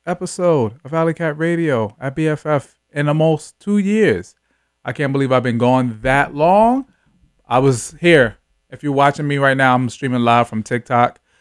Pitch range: 115-140 Hz